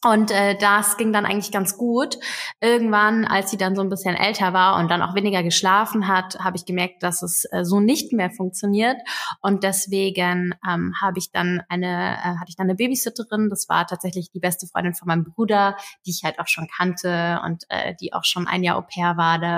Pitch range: 175-210 Hz